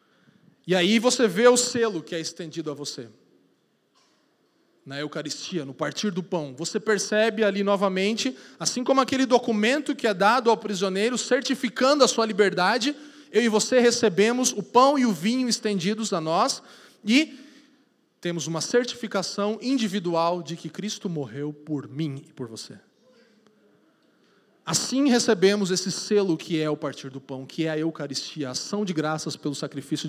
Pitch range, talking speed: 160-235 Hz, 160 wpm